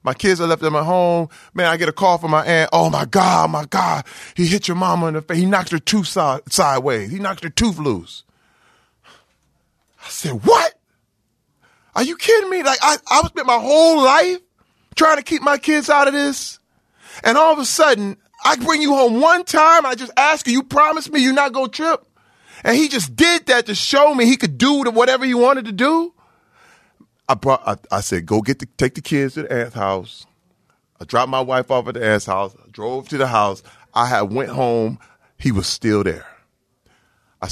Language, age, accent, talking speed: English, 30-49, American, 215 wpm